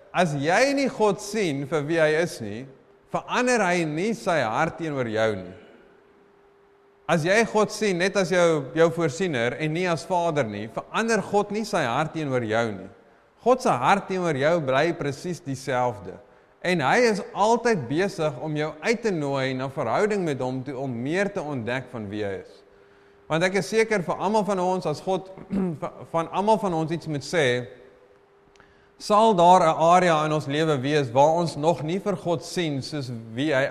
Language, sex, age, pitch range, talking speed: English, male, 30-49, 140-190 Hz, 185 wpm